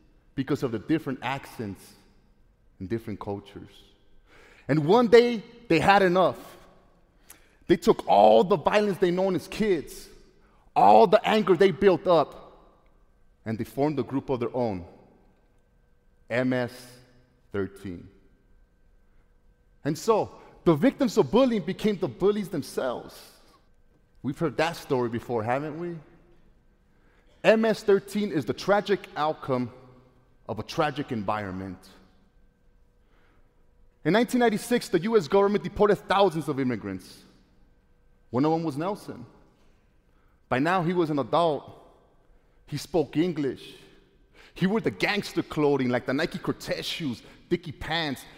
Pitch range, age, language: 115-185 Hz, 30-49, English